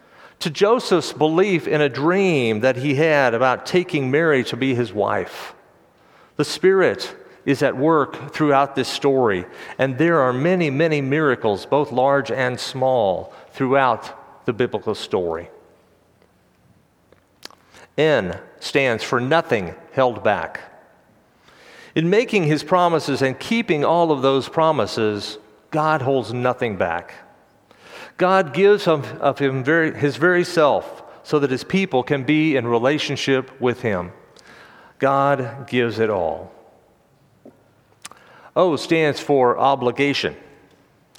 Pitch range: 125-165 Hz